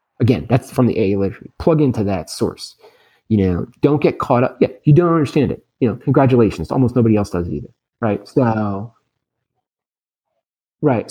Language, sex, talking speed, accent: English, male, 180 wpm, American